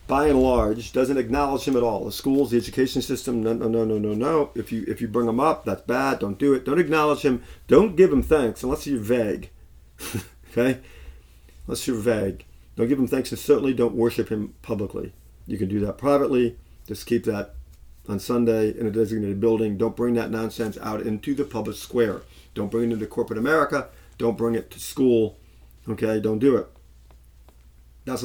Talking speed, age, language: 195 wpm, 40-59, English